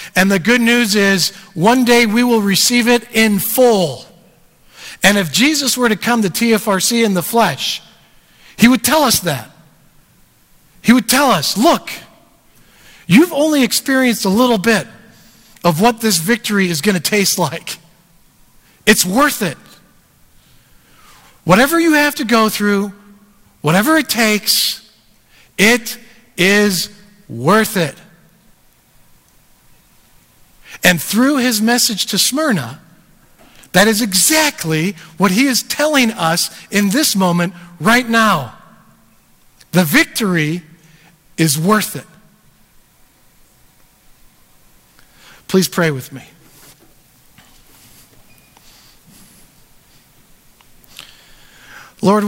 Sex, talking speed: male, 110 wpm